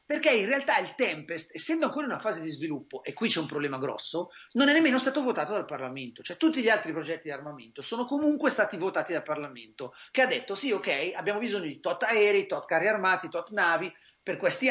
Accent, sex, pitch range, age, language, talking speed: native, male, 155-245 Hz, 30-49, Italian, 225 wpm